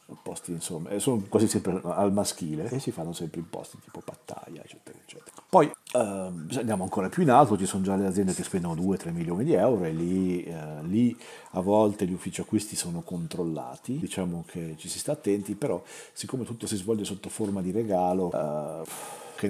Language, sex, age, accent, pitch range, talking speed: Italian, male, 40-59, native, 90-110 Hz, 195 wpm